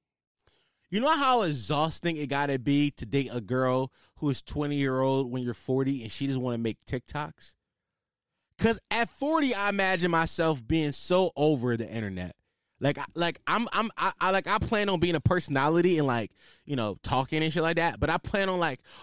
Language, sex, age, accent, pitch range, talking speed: English, male, 20-39, American, 125-175 Hz, 205 wpm